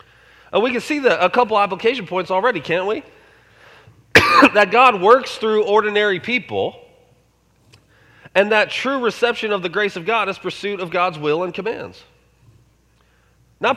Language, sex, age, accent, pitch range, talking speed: English, male, 30-49, American, 160-230 Hz, 155 wpm